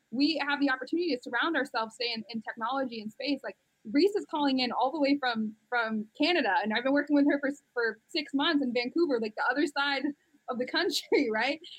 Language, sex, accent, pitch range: English, female, American, 235-290 Hz